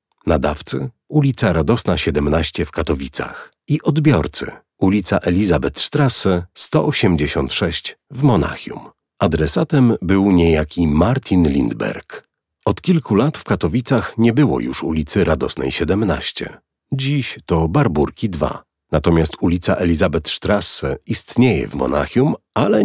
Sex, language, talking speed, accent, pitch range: male, Polish, 105 wpm, native, 85-125 Hz